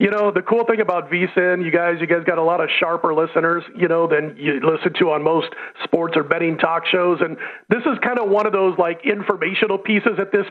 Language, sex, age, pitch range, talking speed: English, male, 40-59, 175-205 Hz, 245 wpm